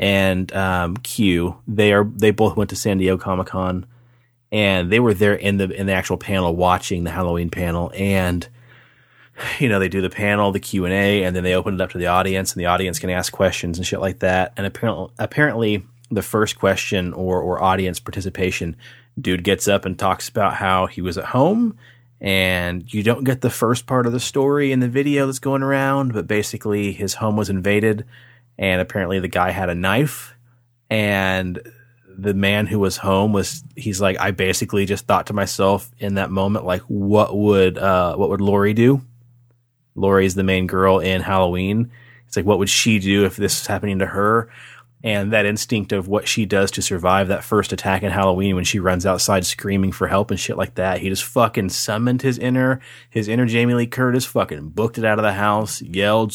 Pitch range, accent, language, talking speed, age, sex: 95-115 Hz, American, English, 210 wpm, 30-49, male